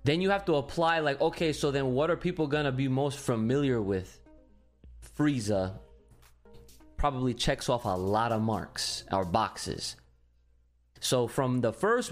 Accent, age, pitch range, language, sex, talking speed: American, 20-39, 105-150 Hz, English, male, 160 wpm